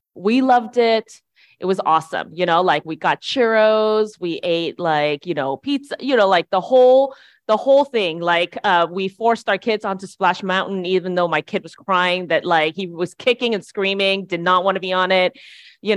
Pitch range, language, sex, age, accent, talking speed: 175-235 Hz, English, female, 20-39, American, 210 wpm